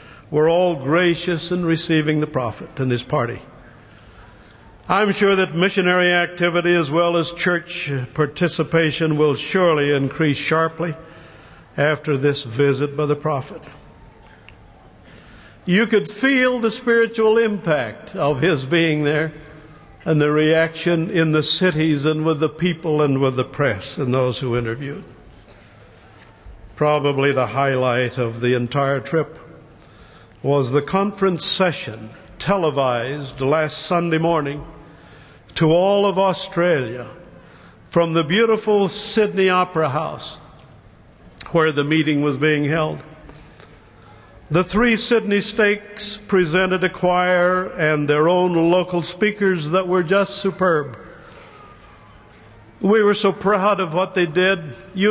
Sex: male